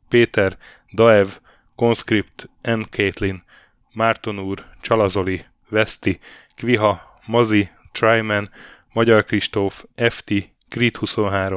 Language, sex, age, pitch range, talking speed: Hungarian, male, 10-29, 95-115 Hz, 85 wpm